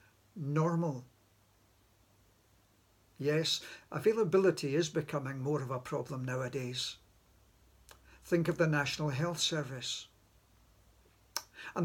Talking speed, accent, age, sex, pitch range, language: 85 wpm, British, 60-79, male, 105-170 Hz, English